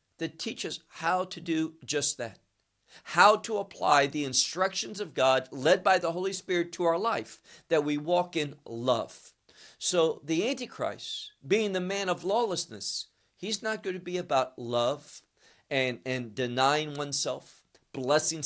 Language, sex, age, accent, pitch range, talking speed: English, male, 50-69, American, 140-200 Hz, 155 wpm